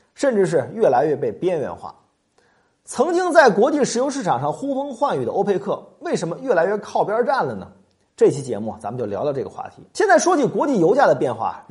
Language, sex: Chinese, male